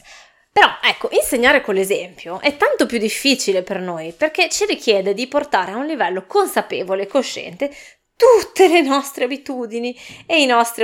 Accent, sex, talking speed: native, female, 160 wpm